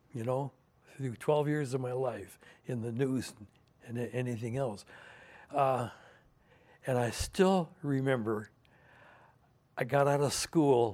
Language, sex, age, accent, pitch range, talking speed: English, male, 60-79, American, 115-140 Hz, 130 wpm